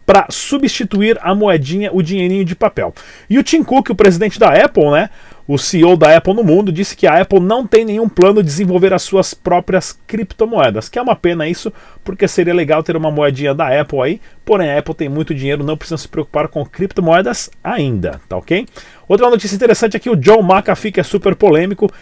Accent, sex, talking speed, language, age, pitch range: Brazilian, male, 215 wpm, Portuguese, 40-59, 155-200 Hz